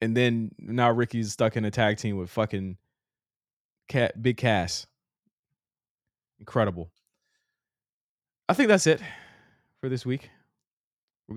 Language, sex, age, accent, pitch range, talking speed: English, male, 20-39, American, 100-125 Hz, 120 wpm